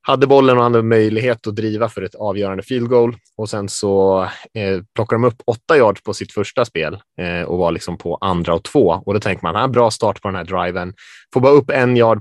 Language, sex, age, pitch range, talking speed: Swedish, male, 20-39, 95-120 Hz, 240 wpm